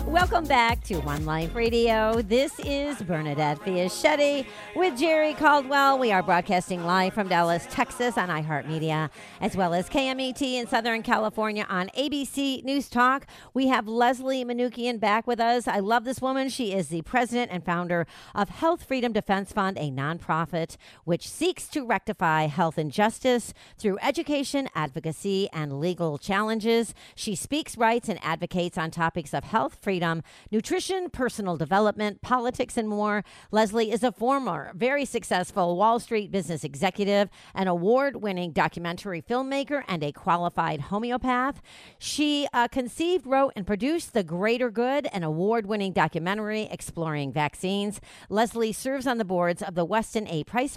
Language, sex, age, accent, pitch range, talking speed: English, female, 40-59, American, 175-250 Hz, 150 wpm